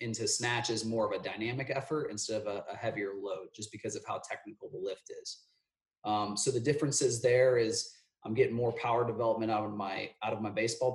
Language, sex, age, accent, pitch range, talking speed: English, male, 30-49, American, 110-145 Hz, 215 wpm